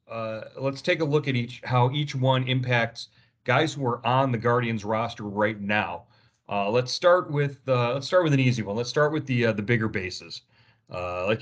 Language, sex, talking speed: English, male, 215 wpm